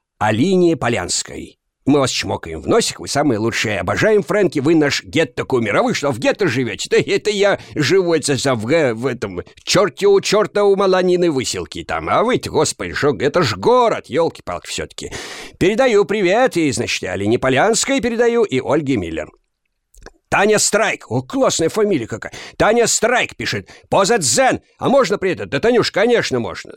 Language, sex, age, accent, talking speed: Russian, male, 50-69, native, 170 wpm